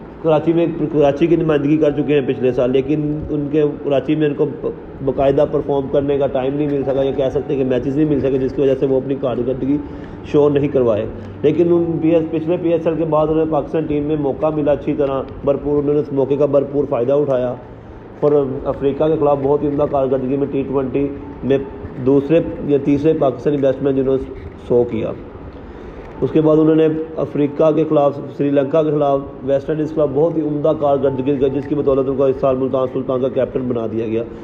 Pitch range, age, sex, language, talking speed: 135-155 Hz, 30-49, male, Urdu, 210 wpm